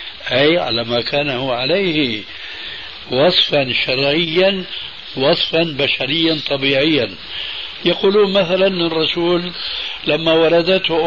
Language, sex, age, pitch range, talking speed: Arabic, male, 60-79, 130-175 Hz, 85 wpm